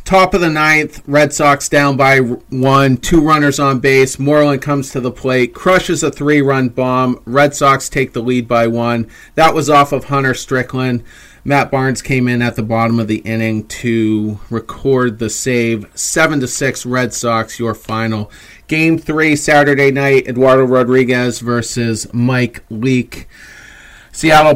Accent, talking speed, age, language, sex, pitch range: American, 160 wpm, 30-49, English, male, 115-135 Hz